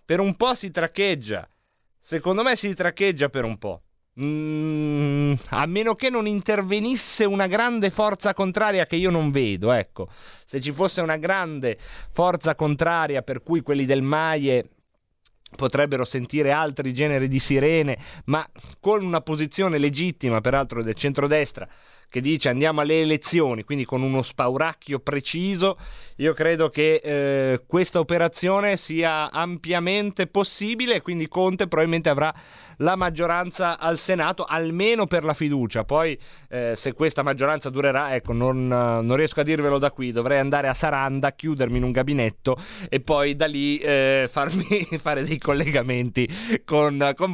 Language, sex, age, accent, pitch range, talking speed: Italian, male, 30-49, native, 140-180 Hz, 150 wpm